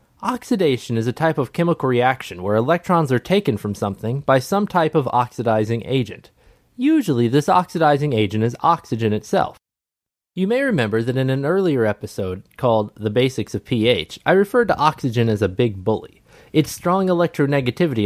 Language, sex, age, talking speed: English, male, 20-39, 165 wpm